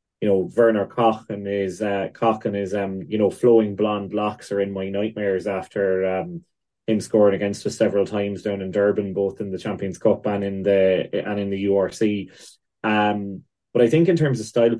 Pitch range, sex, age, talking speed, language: 95-110 Hz, male, 20-39, 205 wpm, English